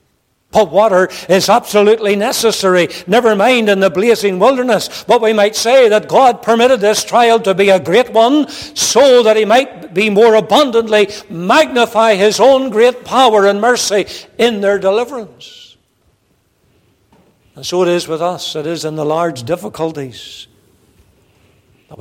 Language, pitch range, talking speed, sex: English, 150-200 Hz, 150 wpm, male